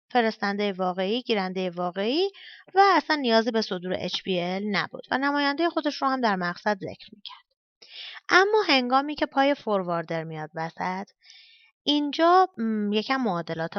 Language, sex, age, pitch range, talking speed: Persian, female, 30-49, 195-285 Hz, 130 wpm